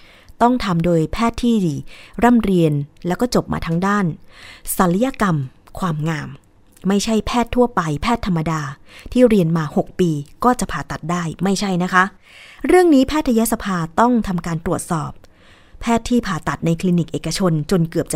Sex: female